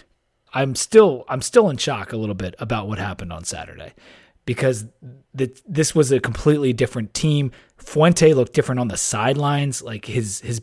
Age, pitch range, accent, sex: 30-49, 120-150 Hz, American, male